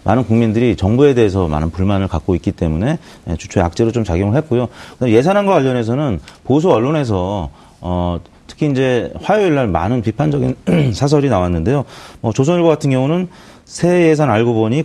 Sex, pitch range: male, 95-130 Hz